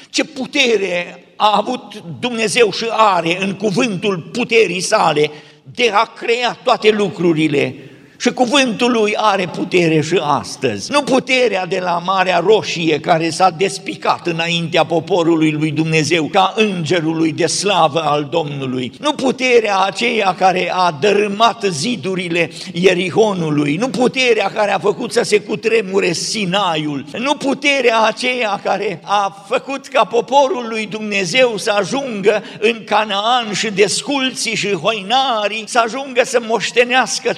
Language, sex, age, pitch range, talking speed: Romanian, male, 50-69, 160-230 Hz, 130 wpm